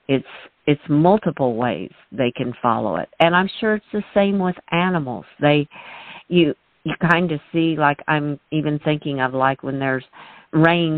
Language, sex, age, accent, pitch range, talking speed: English, female, 50-69, American, 135-180 Hz, 170 wpm